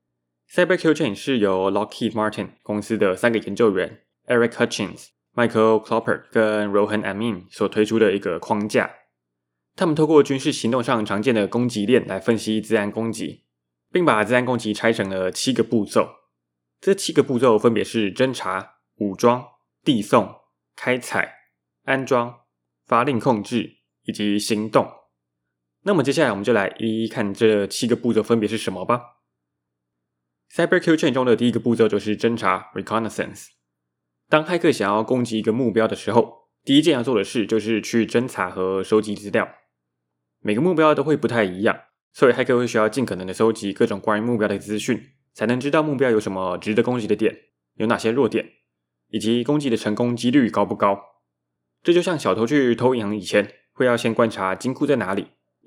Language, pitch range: Chinese, 95-120 Hz